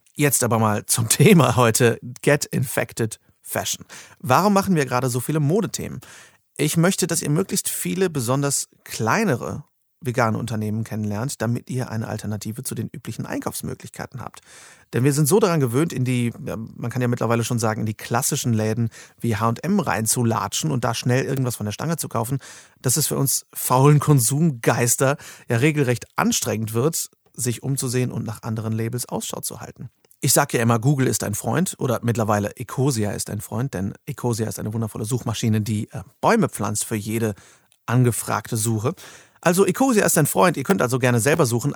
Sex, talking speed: male, 175 wpm